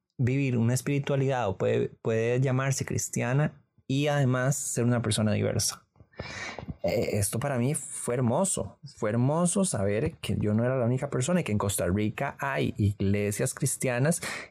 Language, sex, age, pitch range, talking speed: Spanish, male, 20-39, 110-140 Hz, 155 wpm